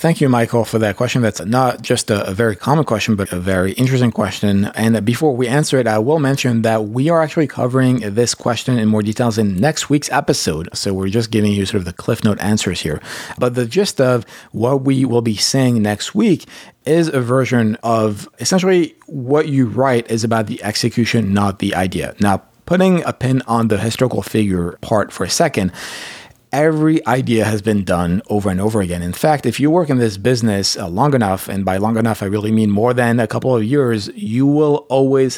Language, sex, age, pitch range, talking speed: English, male, 30-49, 105-130 Hz, 215 wpm